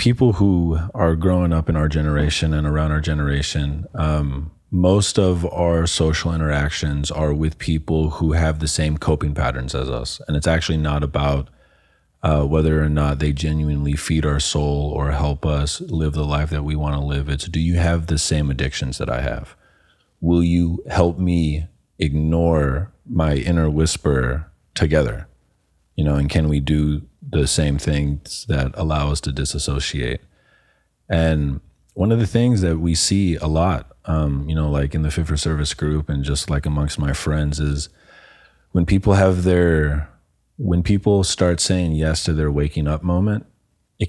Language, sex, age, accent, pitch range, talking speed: English, male, 30-49, American, 75-85 Hz, 175 wpm